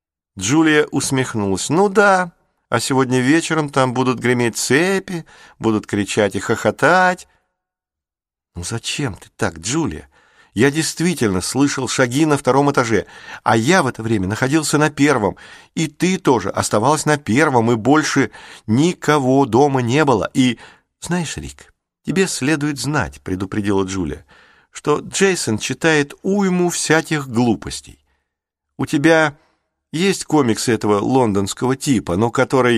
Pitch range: 105-150 Hz